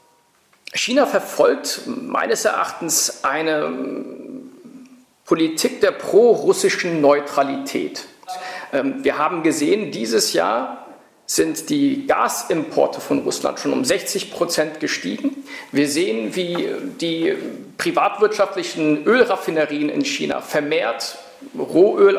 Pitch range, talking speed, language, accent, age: 180-280 Hz, 90 wpm, German, German, 50-69